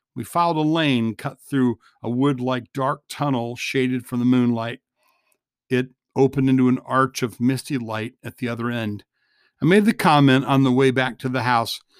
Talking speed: 185 wpm